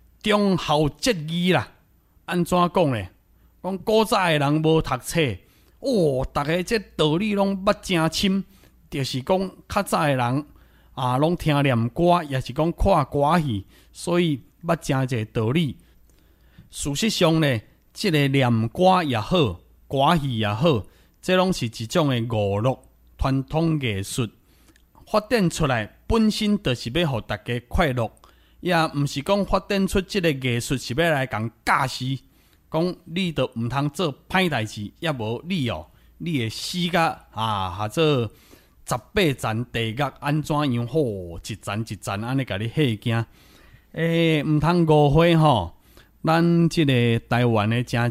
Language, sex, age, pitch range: Chinese, male, 30-49, 110-165 Hz